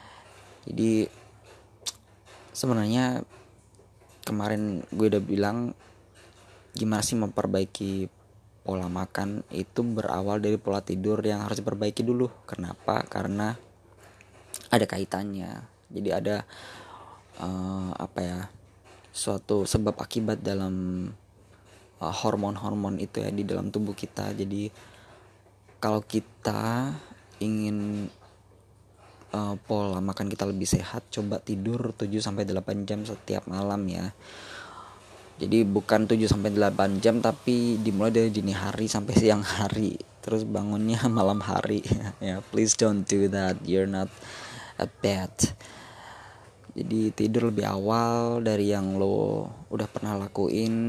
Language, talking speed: Indonesian, 110 wpm